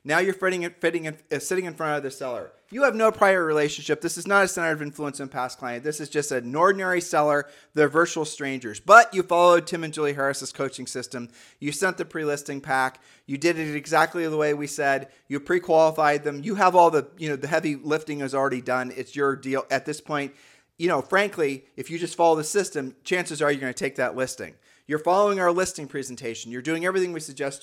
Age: 30-49